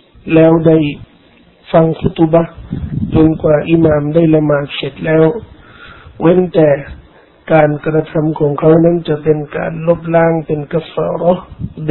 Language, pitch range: Thai, 155-170 Hz